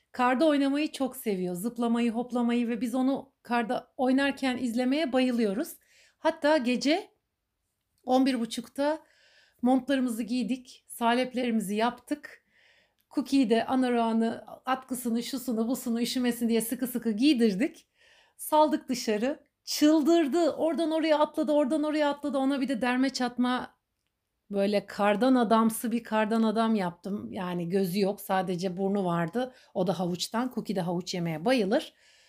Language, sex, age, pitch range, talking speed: Turkish, female, 60-79, 230-290 Hz, 125 wpm